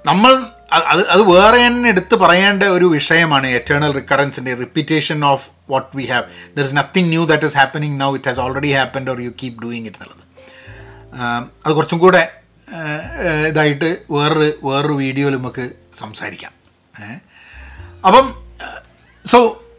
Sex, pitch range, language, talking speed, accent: male, 125-180 Hz, Malayalam, 140 wpm, native